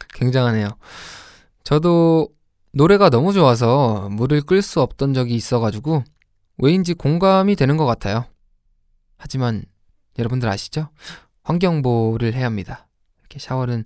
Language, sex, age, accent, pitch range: Korean, male, 20-39, native, 105-155 Hz